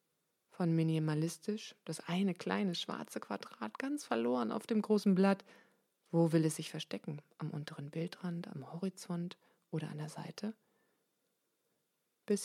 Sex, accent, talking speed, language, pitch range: female, German, 135 wpm, German, 160-190 Hz